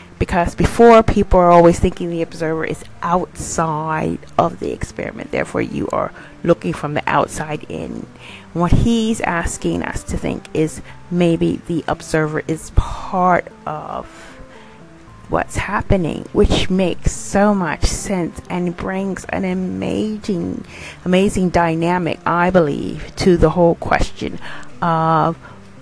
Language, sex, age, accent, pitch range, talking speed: English, female, 40-59, American, 155-185 Hz, 125 wpm